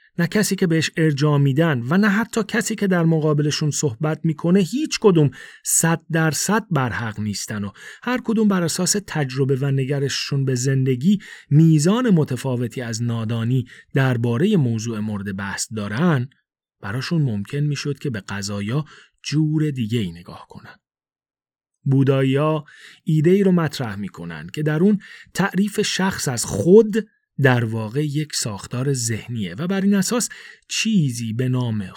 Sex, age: male, 30-49